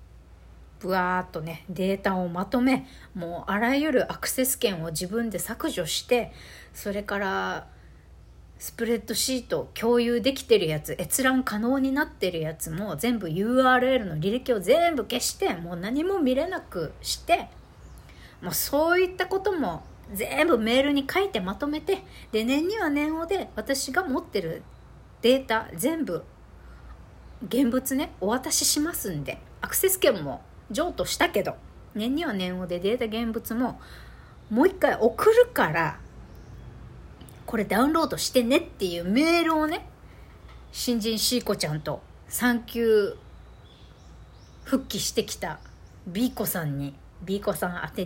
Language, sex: Japanese, female